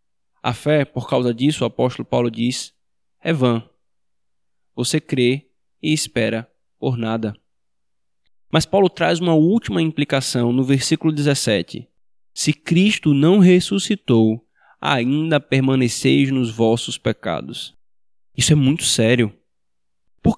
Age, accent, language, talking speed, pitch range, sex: 20-39, Brazilian, Portuguese, 120 wpm, 115-155 Hz, male